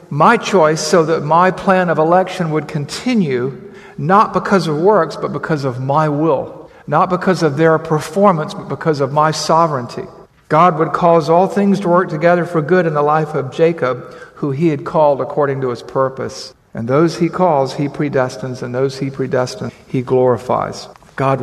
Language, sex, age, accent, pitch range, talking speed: English, male, 50-69, American, 130-170 Hz, 180 wpm